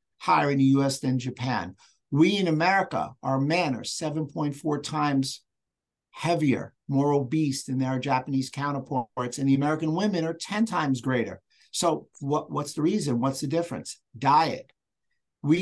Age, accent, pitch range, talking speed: 50-69, American, 130-155 Hz, 145 wpm